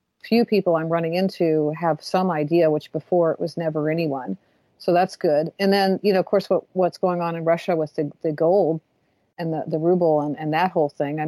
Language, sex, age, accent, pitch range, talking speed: English, female, 50-69, American, 155-180 Hz, 230 wpm